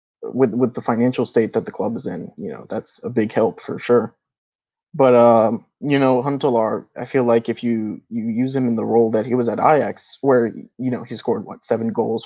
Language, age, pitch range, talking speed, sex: English, 20-39, 115-125 Hz, 230 wpm, male